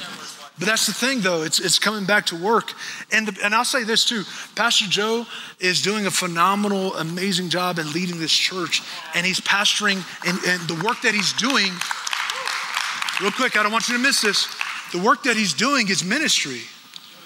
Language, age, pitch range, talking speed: English, 30-49, 185-265 Hz, 190 wpm